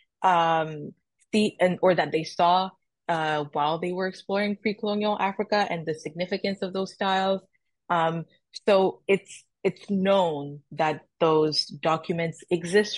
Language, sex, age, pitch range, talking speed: English, female, 20-39, 155-200 Hz, 135 wpm